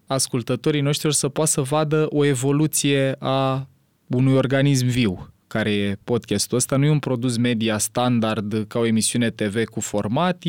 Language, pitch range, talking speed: Romanian, 110-140 Hz, 160 wpm